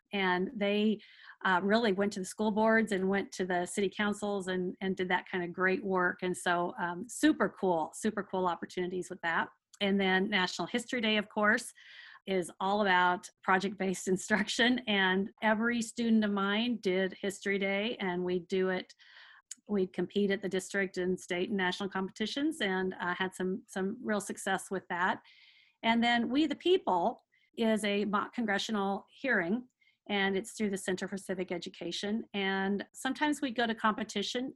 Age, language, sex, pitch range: 40-59, English, female, 190-225 Hz